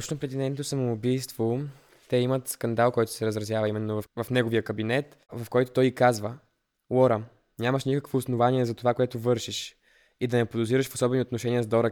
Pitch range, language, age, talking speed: 115-130 Hz, Bulgarian, 20-39, 180 wpm